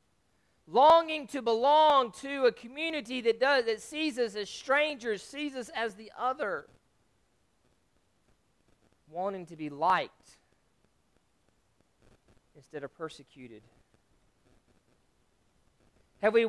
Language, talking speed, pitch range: English, 100 wpm, 150-235 Hz